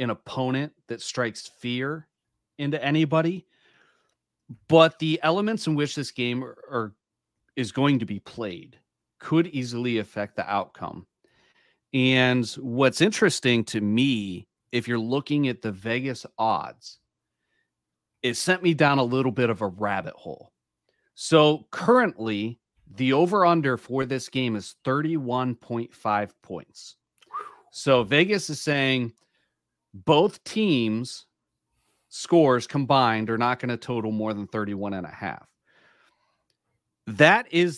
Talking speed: 120 wpm